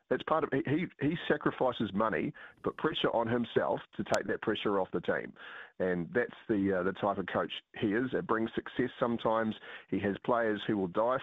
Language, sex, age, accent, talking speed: English, male, 40-59, Australian, 205 wpm